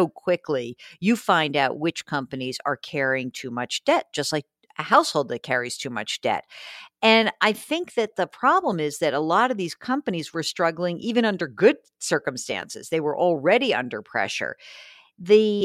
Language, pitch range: English, 150-205 Hz